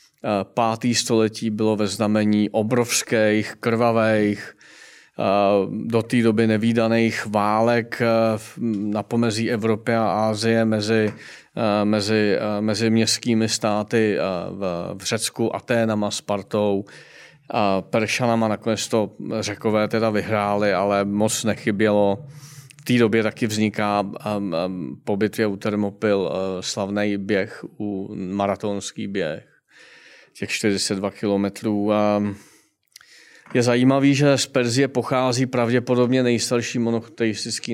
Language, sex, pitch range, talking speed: Czech, male, 105-120 Hz, 95 wpm